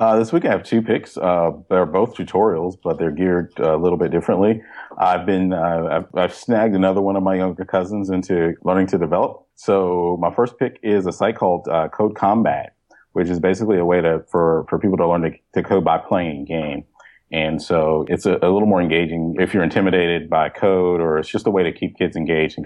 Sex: male